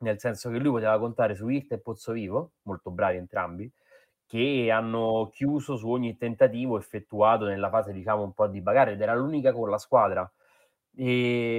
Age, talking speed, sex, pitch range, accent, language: 20-39, 180 wpm, male, 100-115 Hz, native, Italian